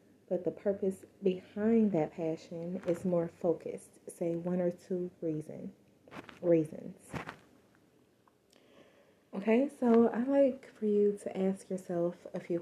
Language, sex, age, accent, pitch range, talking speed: English, female, 20-39, American, 175-205 Hz, 120 wpm